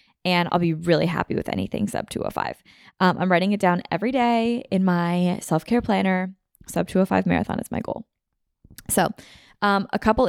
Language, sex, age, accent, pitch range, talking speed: English, female, 20-39, American, 175-205 Hz, 175 wpm